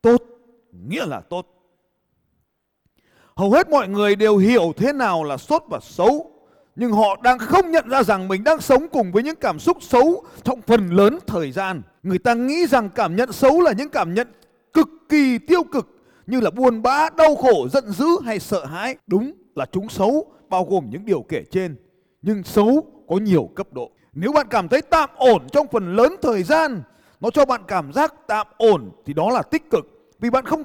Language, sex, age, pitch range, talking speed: Vietnamese, male, 30-49, 195-280 Hz, 205 wpm